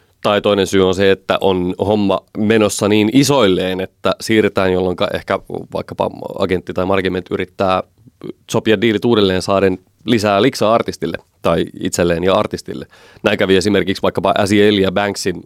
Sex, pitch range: male, 95-105 Hz